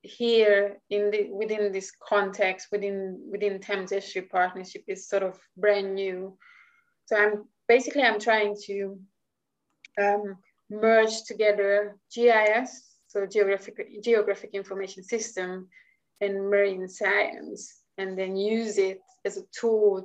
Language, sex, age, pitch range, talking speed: English, female, 20-39, 195-220 Hz, 125 wpm